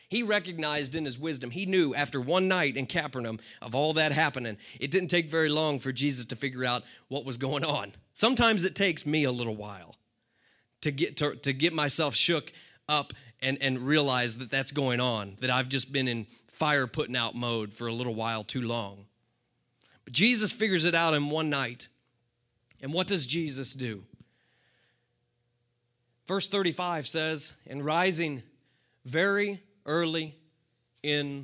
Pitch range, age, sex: 120-155 Hz, 30-49, male